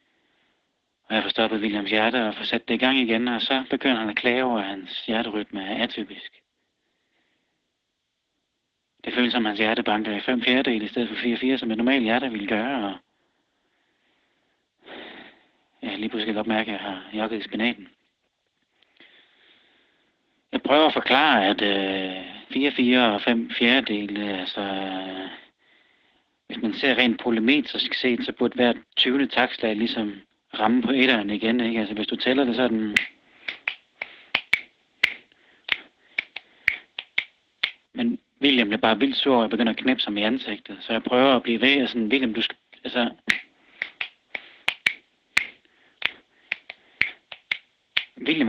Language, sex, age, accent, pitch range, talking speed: Danish, male, 30-49, native, 105-130 Hz, 150 wpm